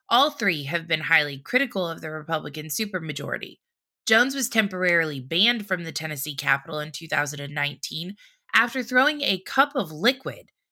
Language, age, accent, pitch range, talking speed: English, 20-39, American, 155-210 Hz, 145 wpm